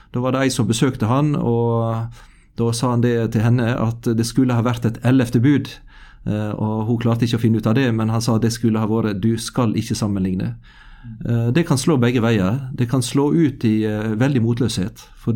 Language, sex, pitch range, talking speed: English, male, 110-130 Hz, 205 wpm